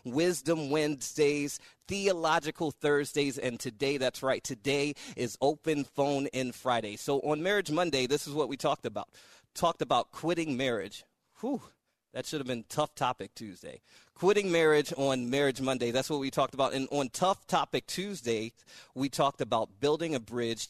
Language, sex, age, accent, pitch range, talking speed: English, male, 30-49, American, 125-155 Hz, 165 wpm